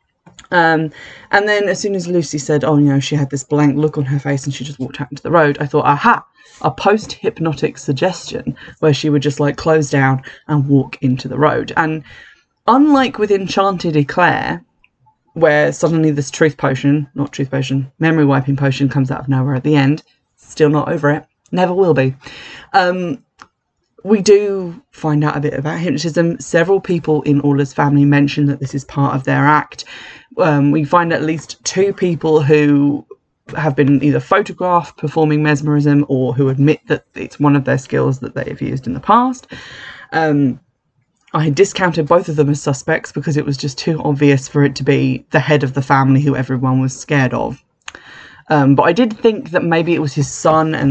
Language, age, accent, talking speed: English, 20-39, British, 200 wpm